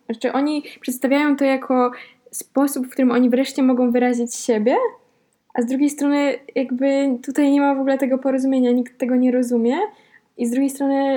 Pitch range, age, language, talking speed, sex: 220-250 Hz, 10-29, Polish, 175 wpm, female